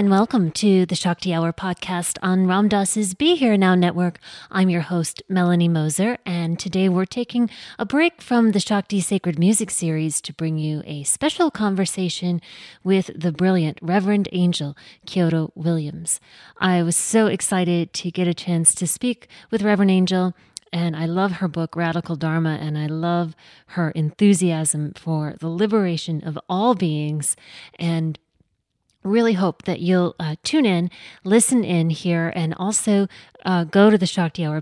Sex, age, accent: female, 30-49, American